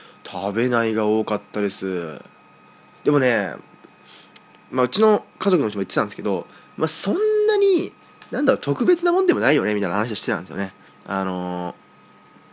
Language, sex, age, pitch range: Japanese, male, 20-39, 105-170 Hz